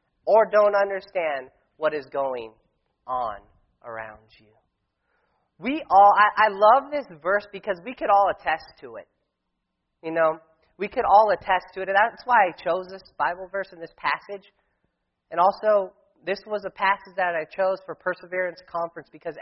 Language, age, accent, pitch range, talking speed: English, 30-49, American, 160-215 Hz, 170 wpm